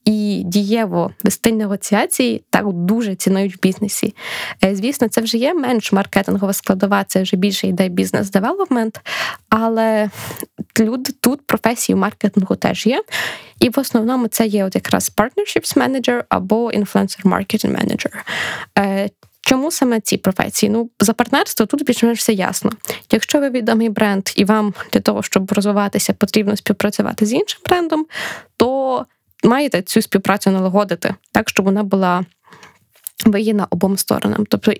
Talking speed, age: 135 wpm, 20-39